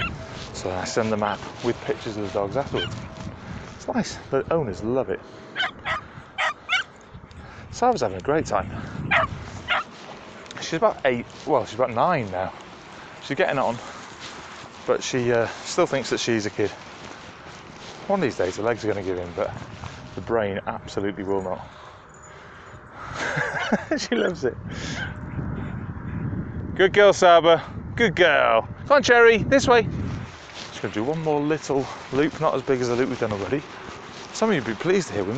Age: 30-49